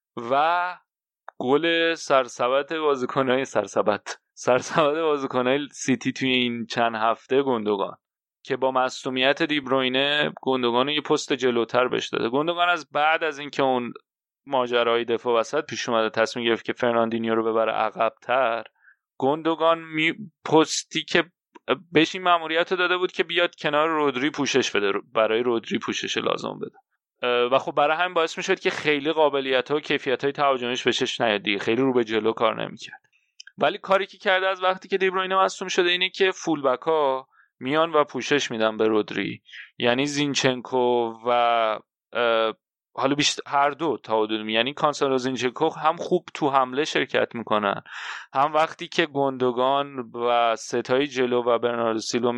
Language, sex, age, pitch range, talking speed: Persian, male, 30-49, 120-160 Hz, 150 wpm